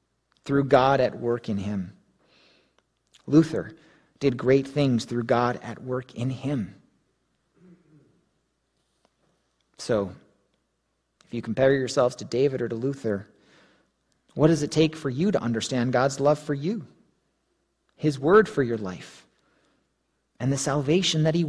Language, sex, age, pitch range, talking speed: English, male, 40-59, 130-175 Hz, 135 wpm